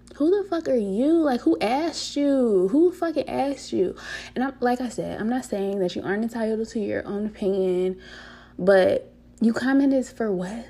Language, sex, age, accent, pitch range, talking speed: English, female, 20-39, American, 185-245 Hz, 195 wpm